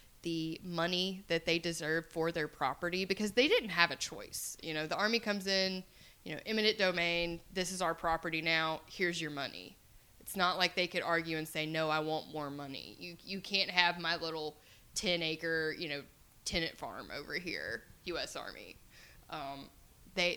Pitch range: 155-185 Hz